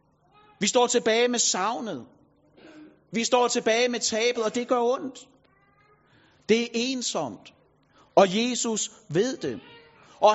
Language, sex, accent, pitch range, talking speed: Danish, male, native, 210-250 Hz, 130 wpm